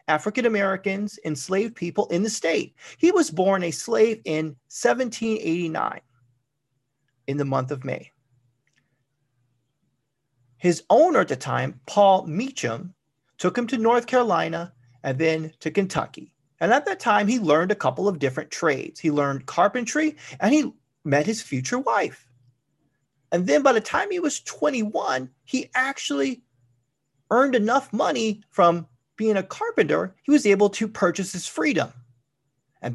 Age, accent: 30-49, American